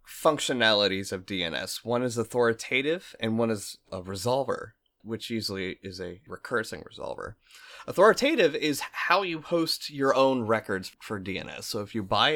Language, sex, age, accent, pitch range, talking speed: English, male, 20-39, American, 100-130 Hz, 150 wpm